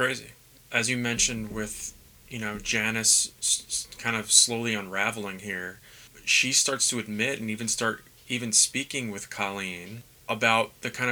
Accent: American